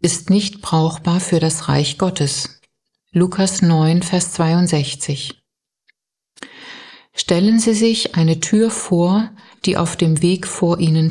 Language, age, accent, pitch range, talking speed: German, 60-79, German, 150-195 Hz, 125 wpm